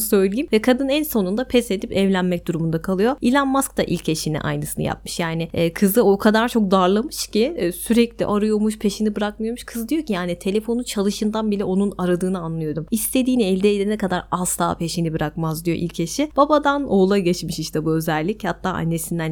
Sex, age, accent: female, 30-49, native